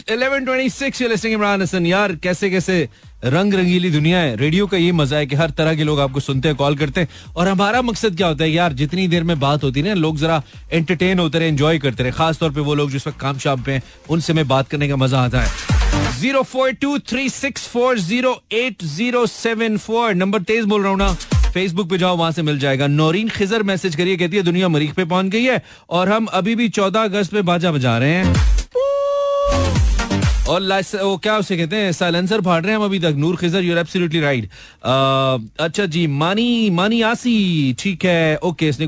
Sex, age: male, 30-49